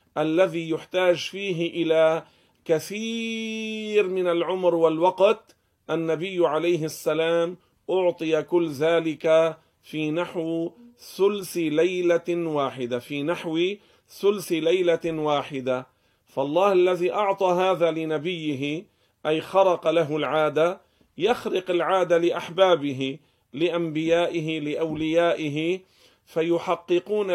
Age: 40-59